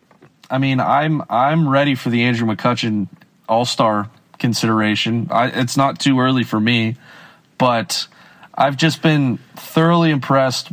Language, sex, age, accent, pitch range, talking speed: English, male, 20-39, American, 125-165 Hz, 135 wpm